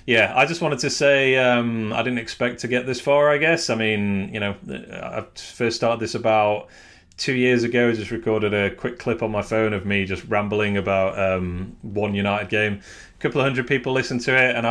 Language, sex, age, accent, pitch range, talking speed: English, male, 30-49, British, 100-130 Hz, 225 wpm